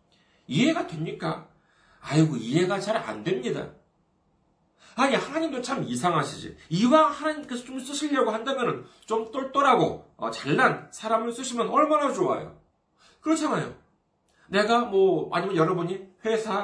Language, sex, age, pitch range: Korean, male, 40-59, 185-265 Hz